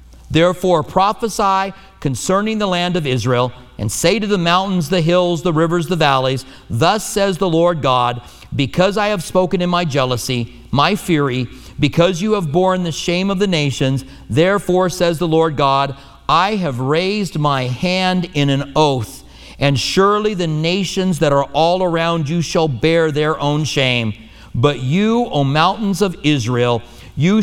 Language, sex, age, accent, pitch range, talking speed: English, male, 50-69, American, 135-180 Hz, 165 wpm